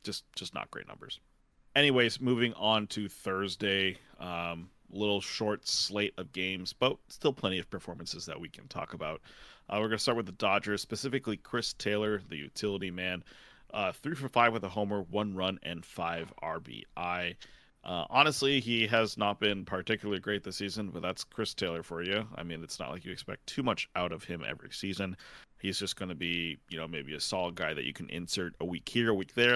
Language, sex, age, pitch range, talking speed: English, male, 30-49, 90-110 Hz, 205 wpm